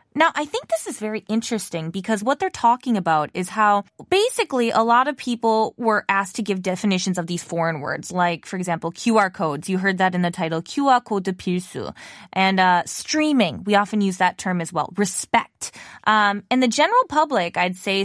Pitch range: 185-250 Hz